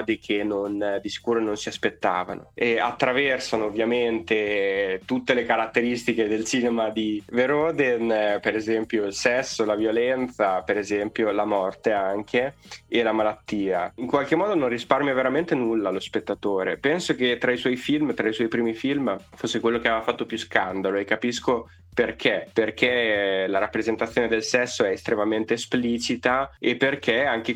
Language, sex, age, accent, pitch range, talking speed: Italian, male, 20-39, native, 110-140 Hz, 155 wpm